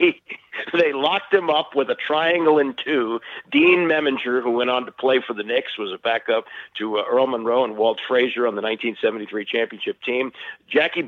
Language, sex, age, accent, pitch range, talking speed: English, male, 50-69, American, 120-190 Hz, 190 wpm